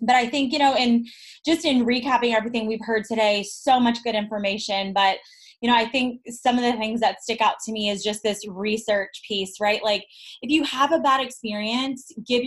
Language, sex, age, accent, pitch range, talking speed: English, female, 20-39, American, 205-240 Hz, 215 wpm